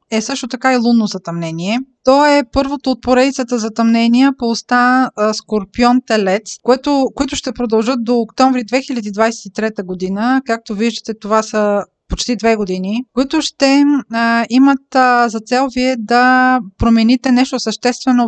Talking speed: 140 wpm